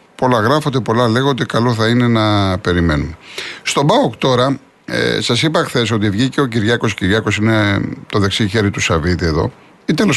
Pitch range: 105-140 Hz